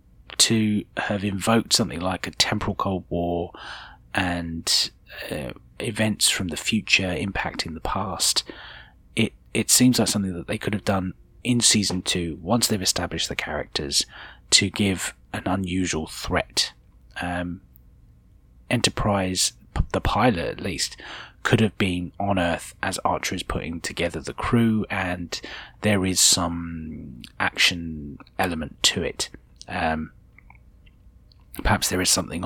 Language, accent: English, British